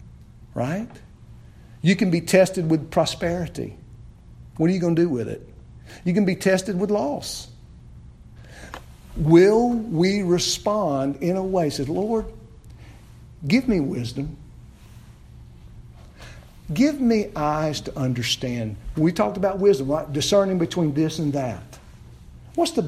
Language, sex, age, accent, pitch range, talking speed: English, male, 50-69, American, 130-180 Hz, 130 wpm